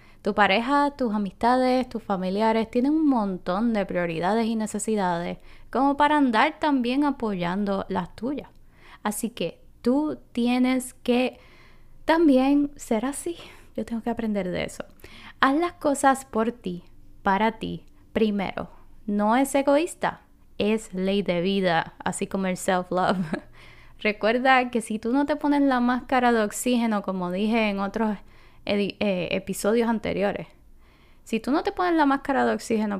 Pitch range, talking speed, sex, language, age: 200-260 Hz, 145 wpm, female, Spanish, 10-29